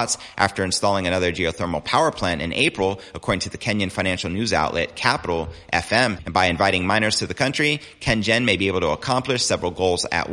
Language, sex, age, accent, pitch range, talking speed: English, male, 30-49, American, 90-110 Hz, 190 wpm